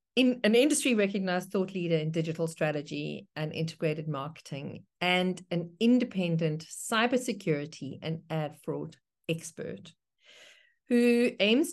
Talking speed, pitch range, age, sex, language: 115 wpm, 165-215 Hz, 50-69, female, English